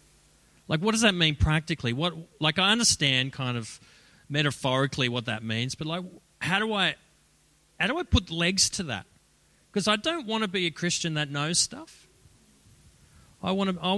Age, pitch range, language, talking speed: 40-59, 130-180 Hz, English, 170 wpm